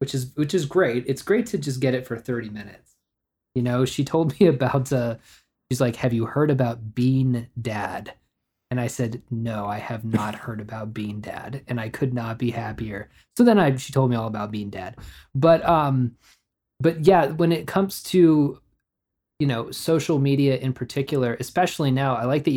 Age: 20-39